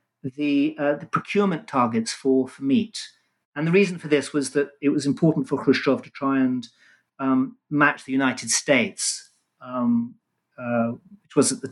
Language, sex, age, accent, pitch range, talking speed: English, male, 40-59, British, 130-205 Hz, 175 wpm